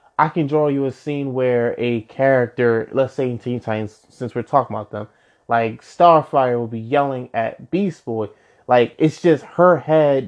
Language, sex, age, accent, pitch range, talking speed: English, male, 20-39, American, 115-140 Hz, 185 wpm